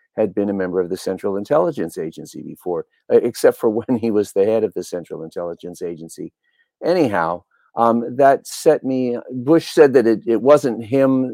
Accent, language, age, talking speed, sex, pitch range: American, English, 50-69, 180 wpm, male, 95-135 Hz